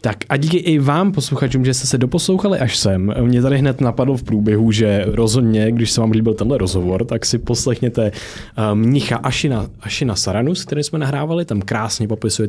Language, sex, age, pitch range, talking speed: Czech, male, 20-39, 100-125 Hz, 185 wpm